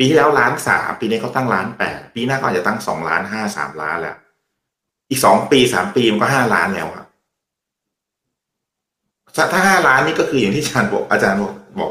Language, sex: Thai, male